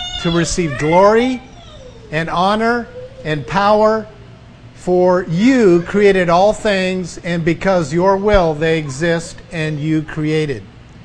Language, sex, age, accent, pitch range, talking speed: English, male, 50-69, American, 155-215 Hz, 115 wpm